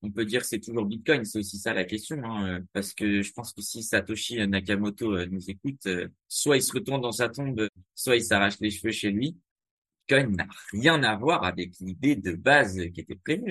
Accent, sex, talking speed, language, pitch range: French, male, 215 wpm, French, 100-120 Hz